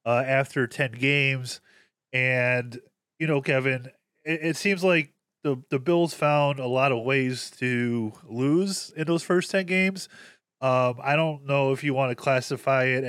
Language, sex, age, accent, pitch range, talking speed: English, male, 20-39, American, 120-140 Hz, 170 wpm